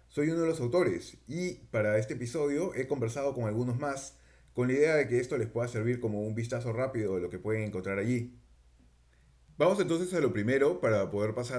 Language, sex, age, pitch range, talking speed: Spanish, male, 30-49, 110-135 Hz, 210 wpm